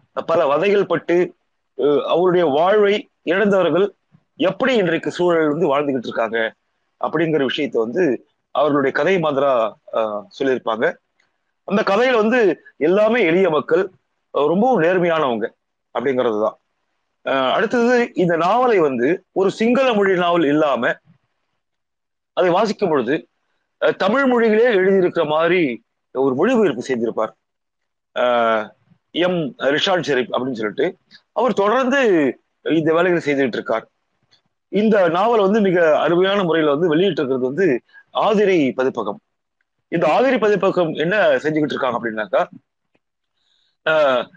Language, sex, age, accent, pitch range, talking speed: Tamil, male, 30-49, native, 160-225 Hz, 110 wpm